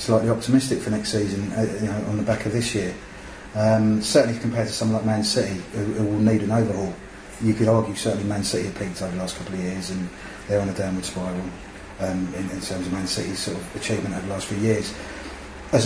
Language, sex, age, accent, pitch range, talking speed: English, male, 30-49, British, 105-120 Hz, 240 wpm